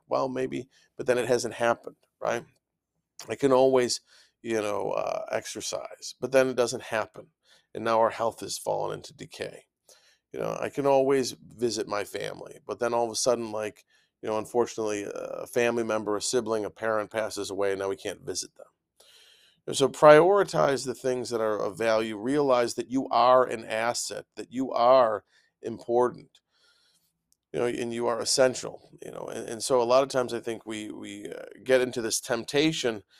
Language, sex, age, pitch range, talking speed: English, male, 40-59, 110-125 Hz, 185 wpm